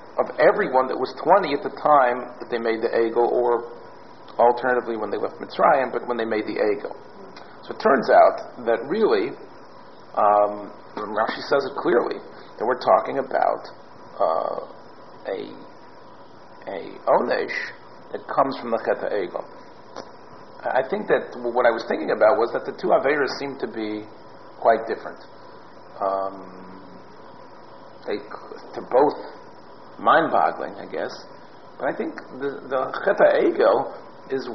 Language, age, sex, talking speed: English, 40-59, male, 140 wpm